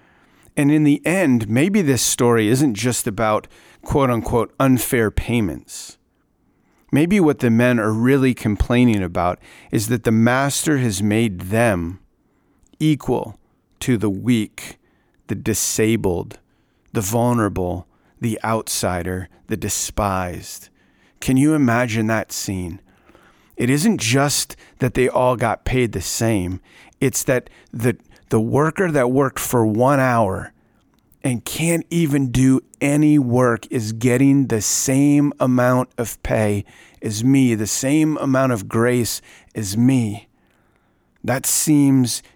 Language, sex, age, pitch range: English, male, 40-59, 110-135 Hz